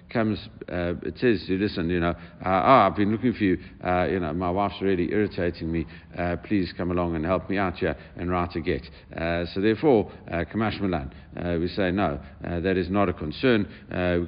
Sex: male